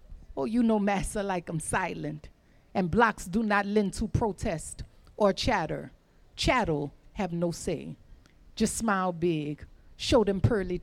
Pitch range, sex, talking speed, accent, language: 225-310 Hz, female, 145 wpm, American, English